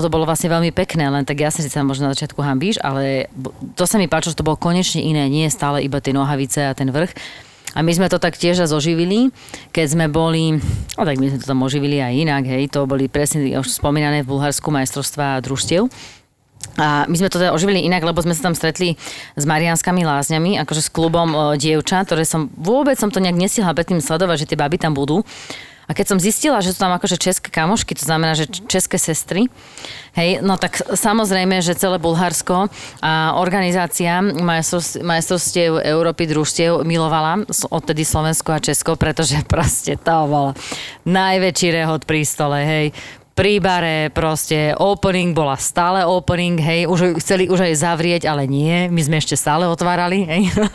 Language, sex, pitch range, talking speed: Slovak, female, 150-180 Hz, 185 wpm